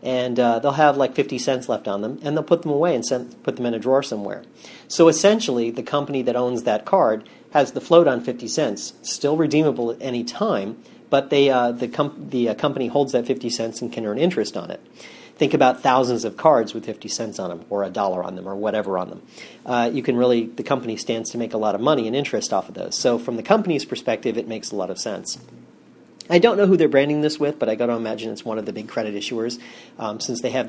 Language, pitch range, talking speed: English, 115-145 Hz, 260 wpm